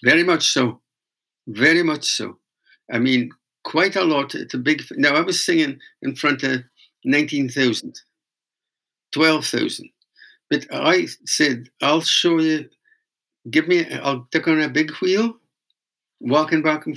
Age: 60-79